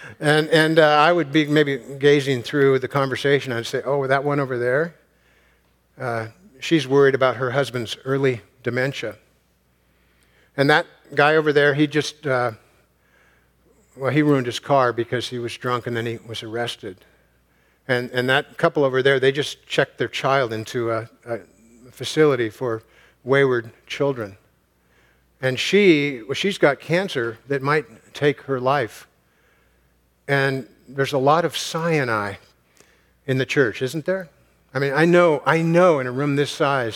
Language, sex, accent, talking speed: English, male, American, 160 wpm